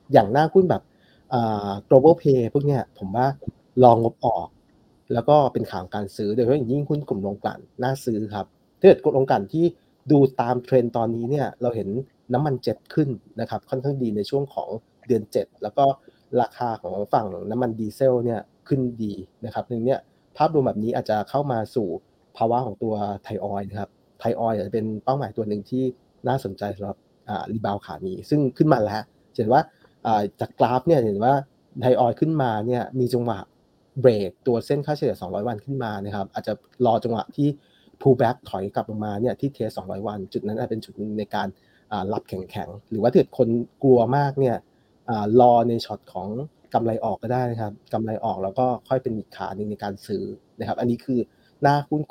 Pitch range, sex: 105-130 Hz, male